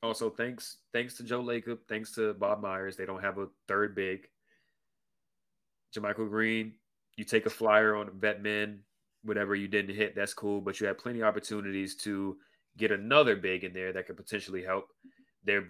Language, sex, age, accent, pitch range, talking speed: English, male, 30-49, American, 100-115 Hz, 185 wpm